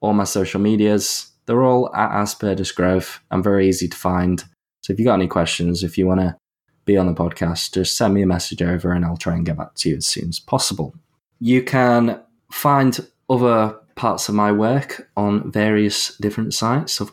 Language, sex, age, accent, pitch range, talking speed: English, male, 20-39, British, 90-110 Hz, 205 wpm